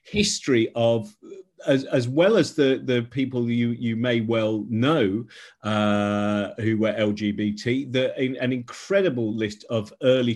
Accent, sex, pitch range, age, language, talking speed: British, male, 110-135 Hz, 40-59, English, 140 wpm